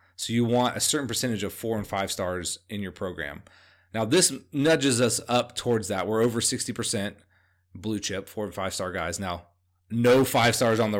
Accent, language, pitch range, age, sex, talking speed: American, English, 90-120 Hz, 30-49, male, 200 wpm